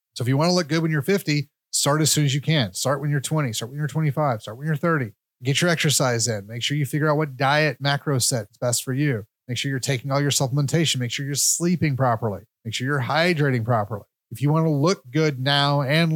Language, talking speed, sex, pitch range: English, 260 wpm, male, 130-155 Hz